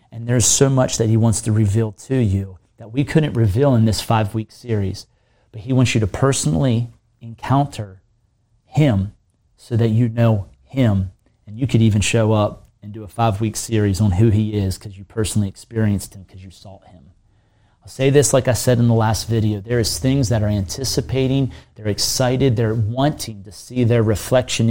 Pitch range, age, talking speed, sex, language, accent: 105-125 Hz, 30-49, 195 wpm, male, English, American